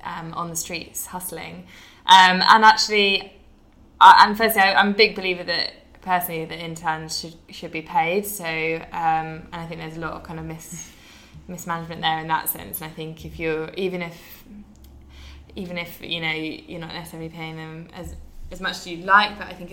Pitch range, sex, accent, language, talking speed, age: 165-190 Hz, female, British, English, 200 wpm, 10-29